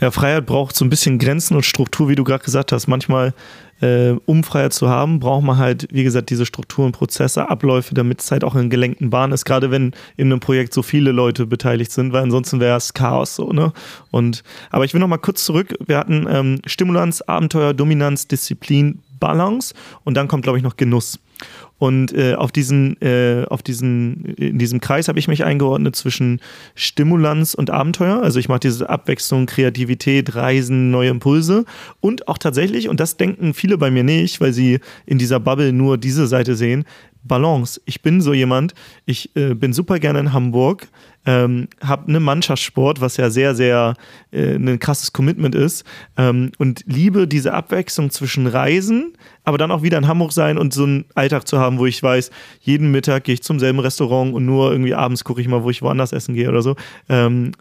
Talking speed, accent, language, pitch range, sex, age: 200 wpm, German, German, 125-150 Hz, male, 30-49